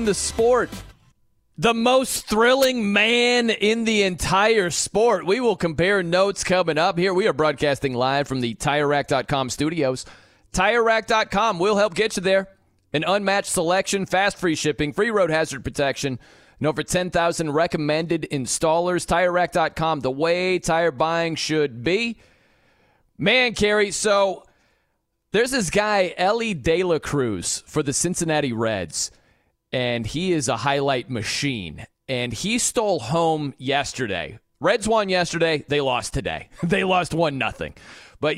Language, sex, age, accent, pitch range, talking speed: English, male, 30-49, American, 145-205 Hz, 140 wpm